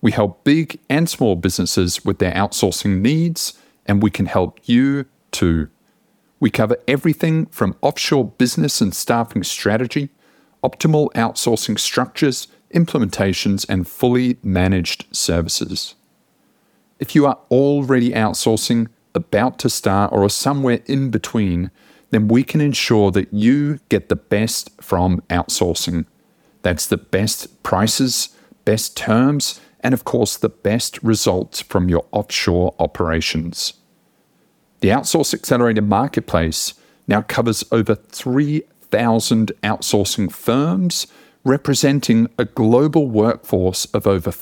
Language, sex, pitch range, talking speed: English, male, 100-130 Hz, 120 wpm